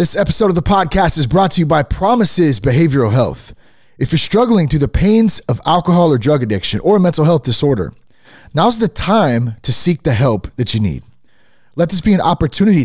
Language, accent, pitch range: English, American, 120-170 Hz